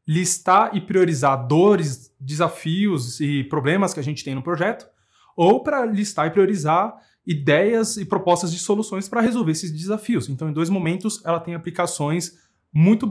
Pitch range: 150-195 Hz